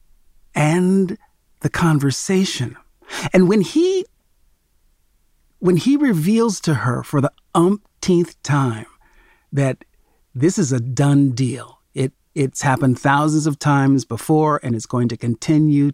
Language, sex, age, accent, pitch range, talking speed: English, male, 40-59, American, 120-165 Hz, 125 wpm